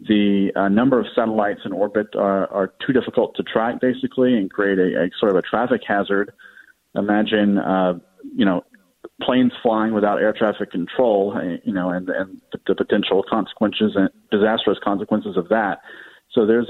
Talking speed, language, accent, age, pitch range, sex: 170 wpm, English, American, 40-59, 100-115 Hz, male